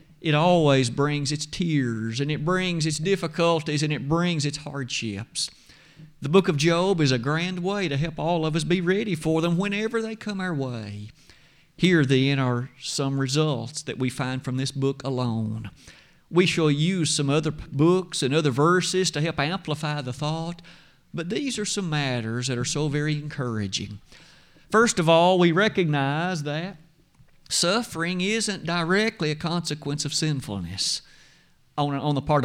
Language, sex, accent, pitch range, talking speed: English, male, American, 140-180 Hz, 165 wpm